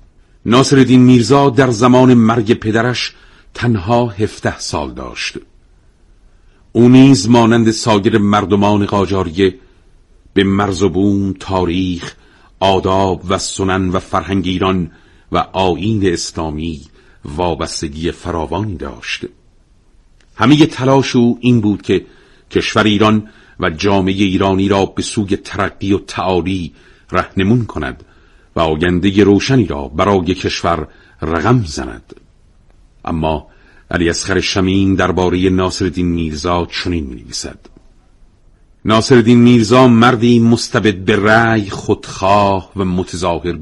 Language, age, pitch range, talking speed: Persian, 50-69, 90-115 Hz, 105 wpm